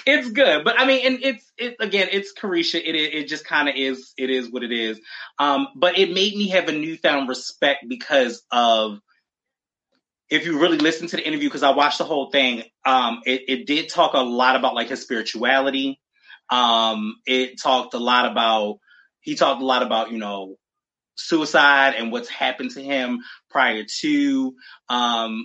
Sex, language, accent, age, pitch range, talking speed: male, English, American, 20-39, 125-180 Hz, 185 wpm